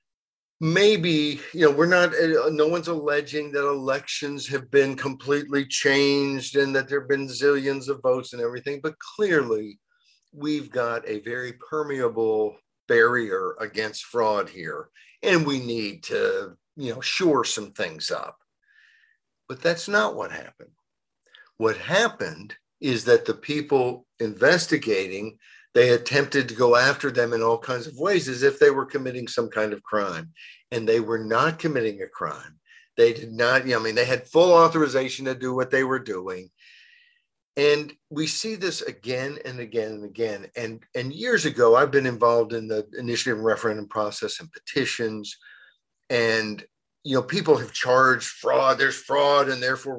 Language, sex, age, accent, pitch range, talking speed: English, male, 50-69, American, 115-155 Hz, 160 wpm